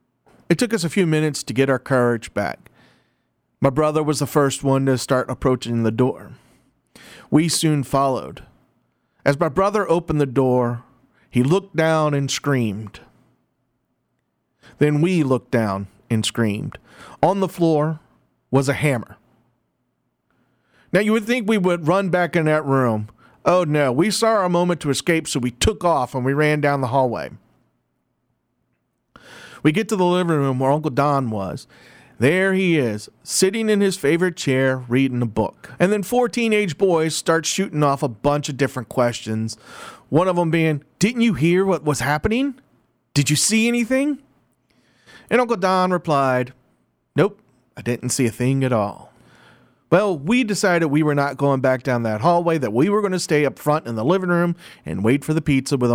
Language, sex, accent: English, male, American